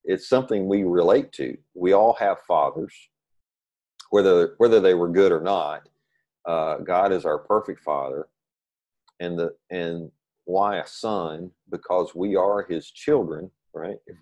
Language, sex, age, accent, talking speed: English, male, 50-69, American, 150 wpm